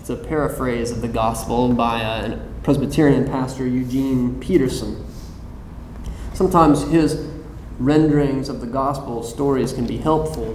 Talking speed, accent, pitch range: 120 wpm, American, 120-160 Hz